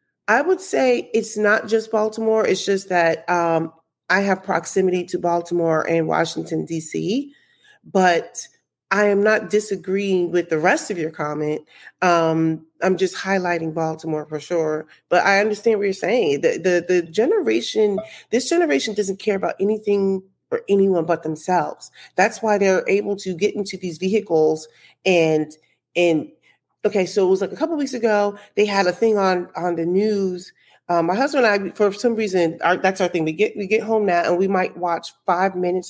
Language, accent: English, American